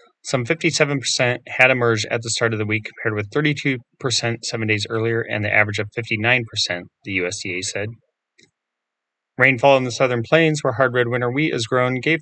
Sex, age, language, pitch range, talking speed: male, 30-49, English, 110-135 Hz, 180 wpm